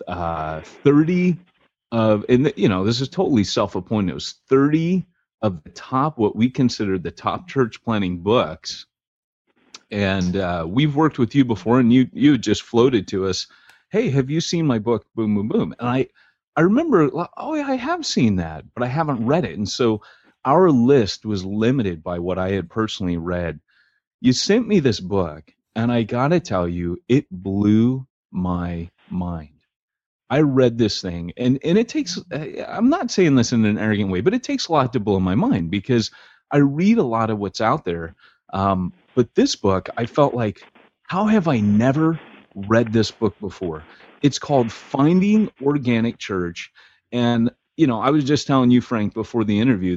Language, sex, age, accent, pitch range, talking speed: English, male, 30-49, American, 100-135 Hz, 185 wpm